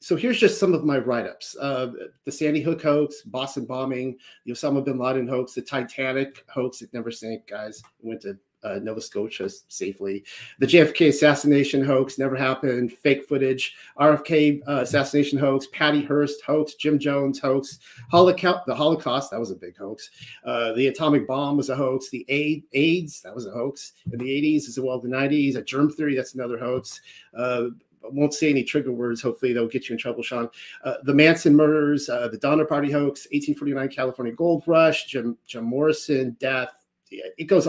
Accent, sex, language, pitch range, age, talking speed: American, male, English, 125-150 Hz, 40-59, 185 wpm